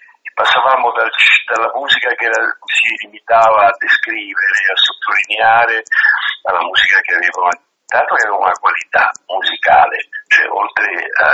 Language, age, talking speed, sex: Italian, 60-79, 115 wpm, male